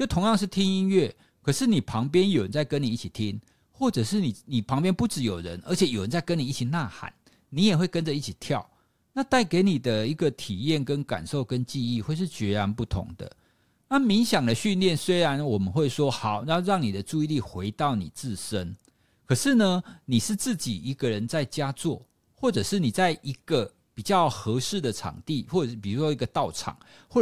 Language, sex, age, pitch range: Chinese, male, 50-69, 115-185 Hz